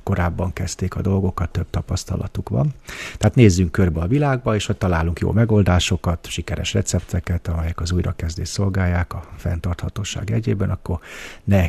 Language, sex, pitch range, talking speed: Hungarian, male, 85-100 Hz, 145 wpm